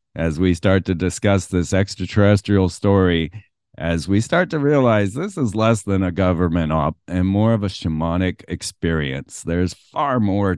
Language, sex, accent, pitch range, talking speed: English, male, American, 85-105 Hz, 165 wpm